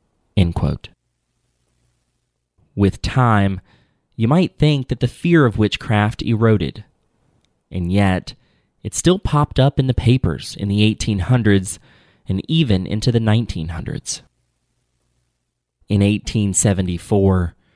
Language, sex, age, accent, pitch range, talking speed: English, male, 30-49, American, 90-115 Hz, 100 wpm